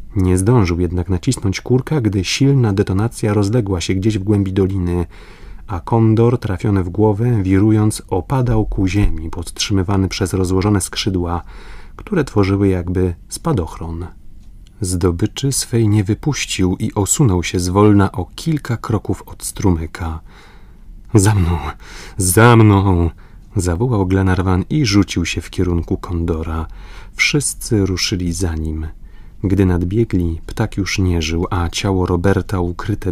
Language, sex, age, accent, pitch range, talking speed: Polish, male, 30-49, native, 90-105 Hz, 125 wpm